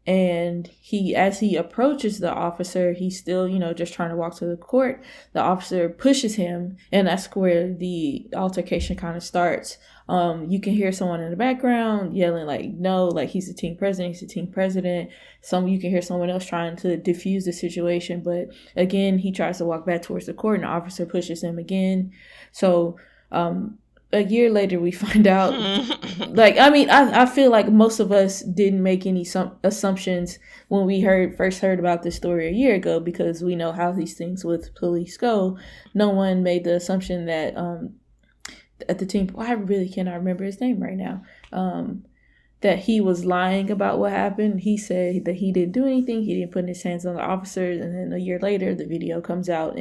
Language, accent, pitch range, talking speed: English, American, 175-200 Hz, 205 wpm